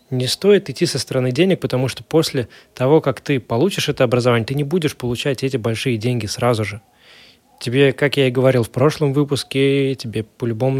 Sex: male